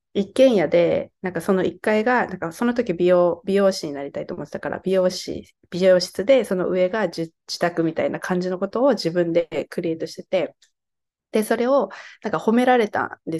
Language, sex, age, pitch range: Japanese, female, 20-39, 170-230 Hz